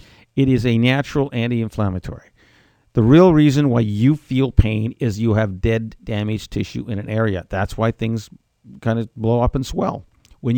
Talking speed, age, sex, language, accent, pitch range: 175 wpm, 50-69, male, English, American, 110-130 Hz